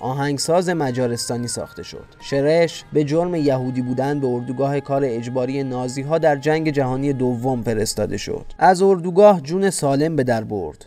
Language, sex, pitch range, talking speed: Persian, male, 125-160 Hz, 160 wpm